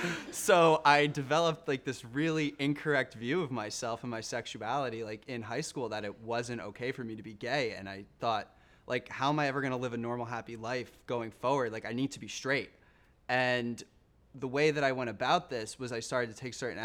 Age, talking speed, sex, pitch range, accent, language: 20-39, 225 wpm, male, 110-130 Hz, American, English